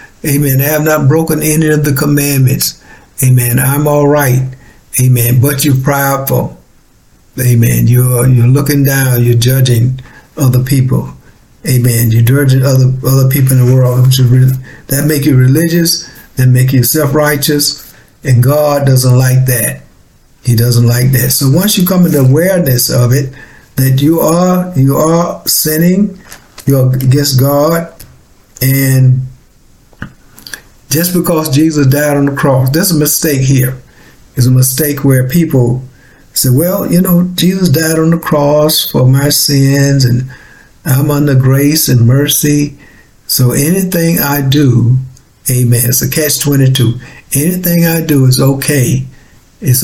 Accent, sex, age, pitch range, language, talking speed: American, male, 60-79, 130-150 Hz, English, 145 wpm